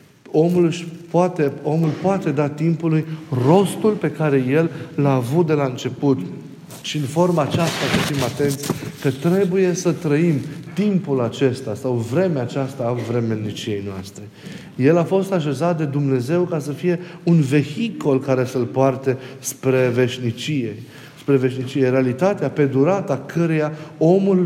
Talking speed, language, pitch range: 135 wpm, Romanian, 130-165 Hz